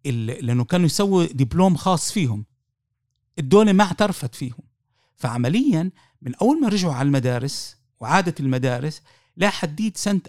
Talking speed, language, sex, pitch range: 130 wpm, Arabic, male, 130-180 Hz